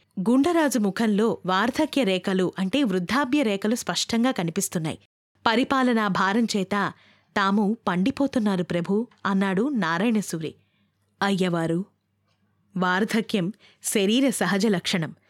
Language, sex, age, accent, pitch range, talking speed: Telugu, female, 20-39, native, 180-230 Hz, 85 wpm